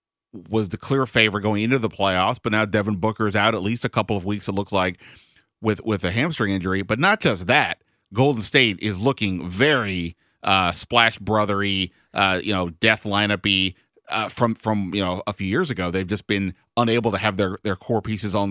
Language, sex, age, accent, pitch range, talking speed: English, male, 30-49, American, 95-110 Hz, 205 wpm